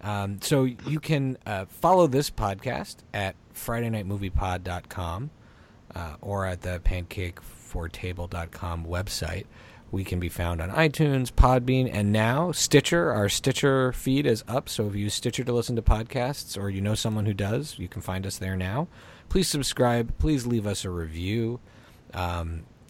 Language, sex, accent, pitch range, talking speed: English, male, American, 90-120 Hz, 155 wpm